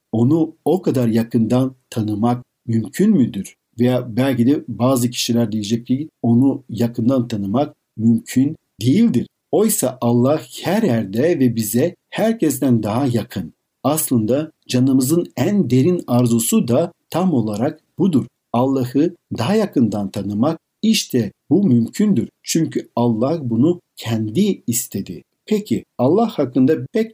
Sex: male